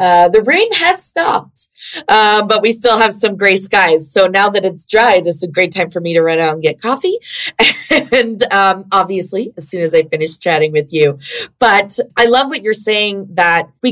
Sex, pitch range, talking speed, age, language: female, 175-215 Hz, 215 wpm, 20-39, English